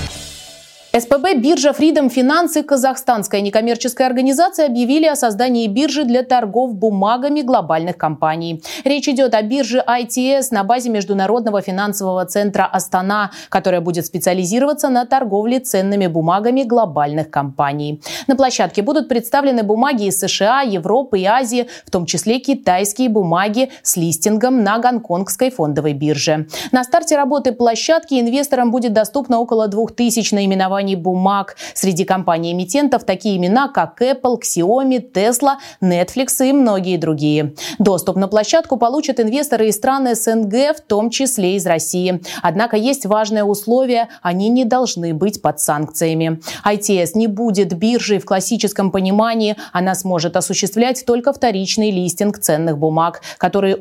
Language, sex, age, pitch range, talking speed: Russian, female, 30-49, 185-255 Hz, 135 wpm